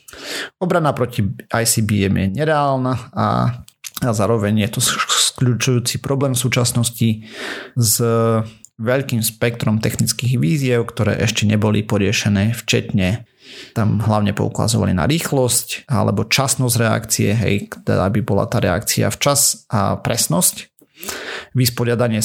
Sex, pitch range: male, 105-125 Hz